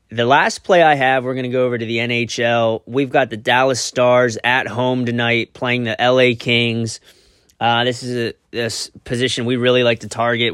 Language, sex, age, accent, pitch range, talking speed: English, male, 20-39, American, 115-135 Hz, 205 wpm